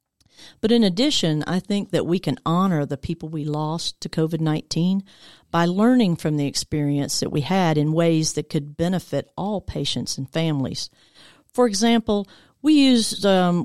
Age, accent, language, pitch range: 50-69, American, English, 155-195 Hz